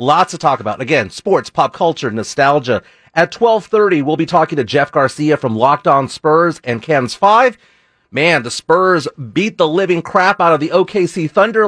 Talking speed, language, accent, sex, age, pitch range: 190 wpm, English, American, male, 40-59, 140-195 Hz